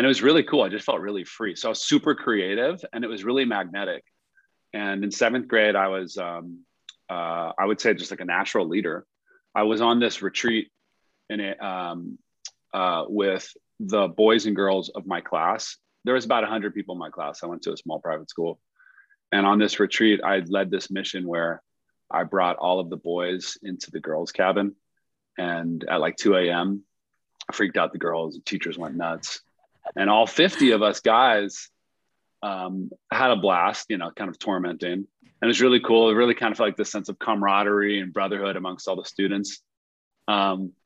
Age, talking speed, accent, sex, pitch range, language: 30-49, 205 wpm, American, male, 95-110 Hz, English